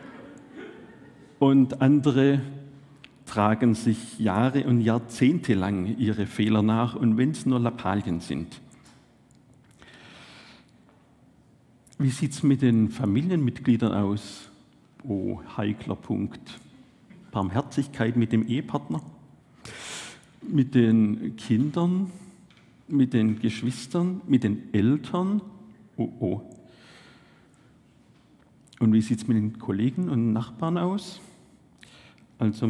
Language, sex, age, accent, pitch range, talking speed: German, male, 50-69, Austrian, 110-140 Hz, 95 wpm